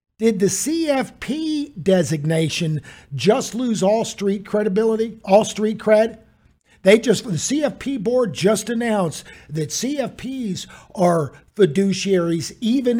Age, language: 50-69, English